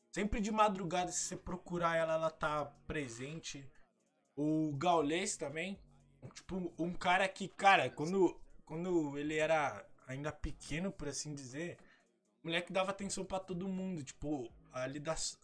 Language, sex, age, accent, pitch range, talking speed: Portuguese, male, 20-39, Brazilian, 135-185 Hz, 145 wpm